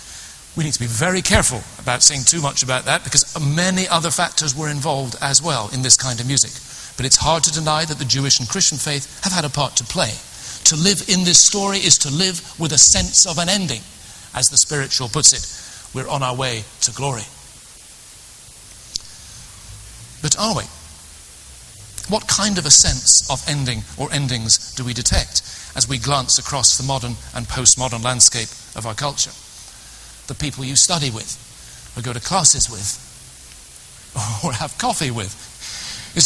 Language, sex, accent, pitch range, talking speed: English, male, British, 120-170 Hz, 180 wpm